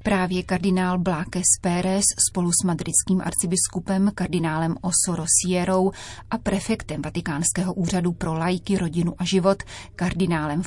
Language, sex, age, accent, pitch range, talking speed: Czech, female, 30-49, native, 175-195 Hz, 115 wpm